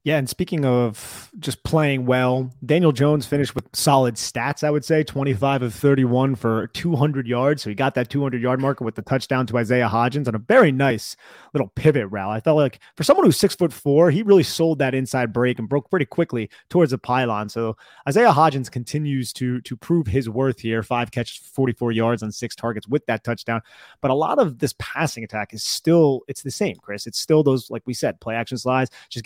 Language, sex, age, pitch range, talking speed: English, male, 30-49, 120-150 Hz, 220 wpm